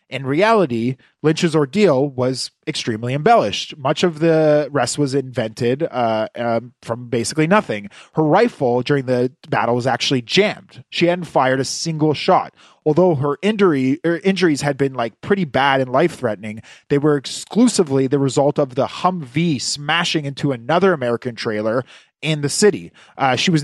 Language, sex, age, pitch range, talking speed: English, male, 30-49, 125-170 Hz, 160 wpm